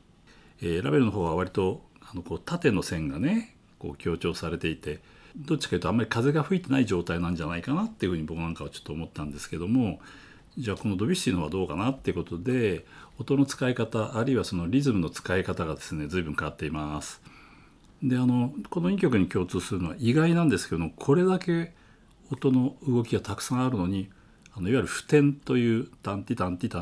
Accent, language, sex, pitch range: native, Japanese, male, 85-135 Hz